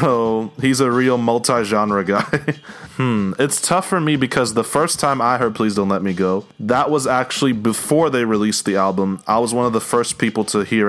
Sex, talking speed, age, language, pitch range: male, 215 wpm, 20-39, English, 100-125 Hz